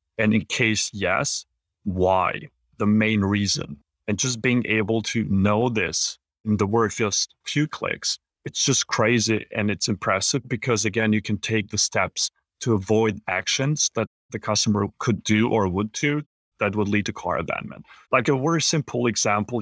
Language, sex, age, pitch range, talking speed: English, male, 30-49, 105-130 Hz, 170 wpm